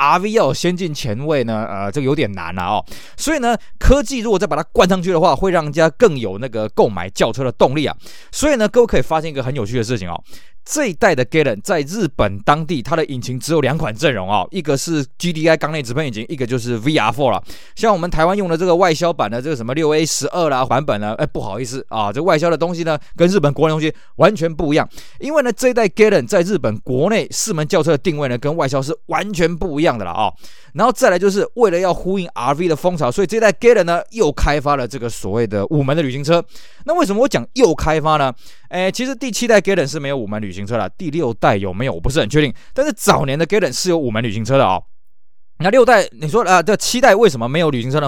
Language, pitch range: Chinese, 130-180 Hz